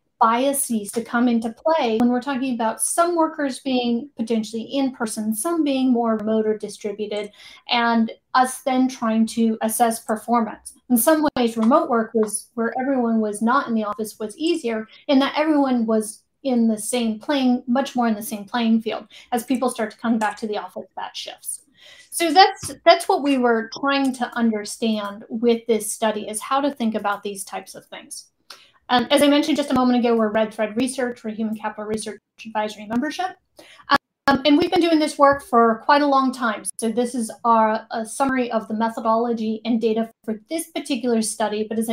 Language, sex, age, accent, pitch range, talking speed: English, female, 30-49, American, 220-265 Hz, 195 wpm